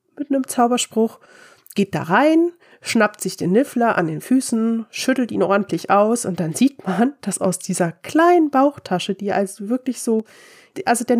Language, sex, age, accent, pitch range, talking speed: German, female, 30-49, German, 190-240 Hz, 170 wpm